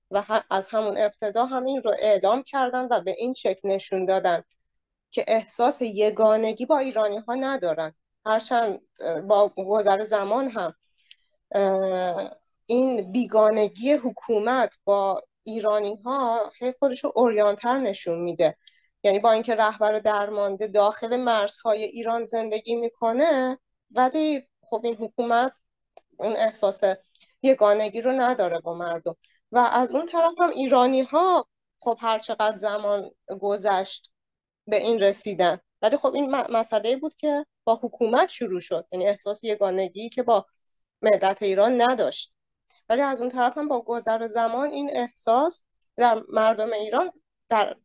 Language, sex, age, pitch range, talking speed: Persian, female, 30-49, 205-250 Hz, 130 wpm